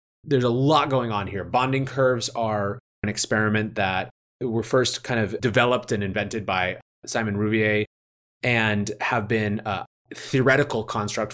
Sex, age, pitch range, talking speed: male, 30-49, 100-125 Hz, 150 wpm